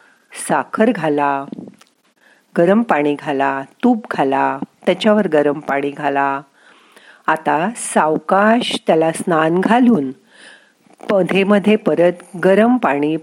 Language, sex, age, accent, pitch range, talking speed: Marathi, female, 50-69, native, 150-220 Hz, 90 wpm